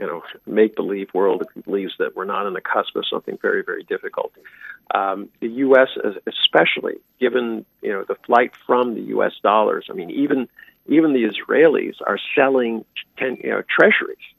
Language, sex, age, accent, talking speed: English, male, 50-69, American, 180 wpm